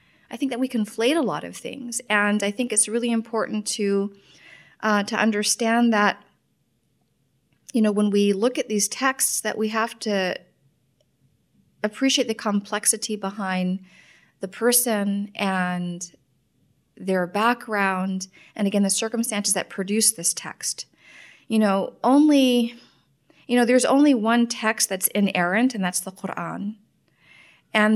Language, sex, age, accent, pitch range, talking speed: English, female, 30-49, American, 190-230 Hz, 140 wpm